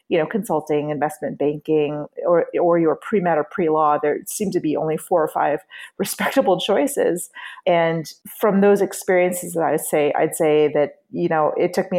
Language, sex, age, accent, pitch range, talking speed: English, female, 30-49, American, 155-195 Hz, 180 wpm